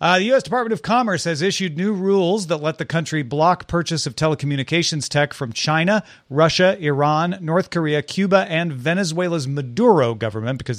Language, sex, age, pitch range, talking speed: English, male, 40-59, 130-175 Hz, 170 wpm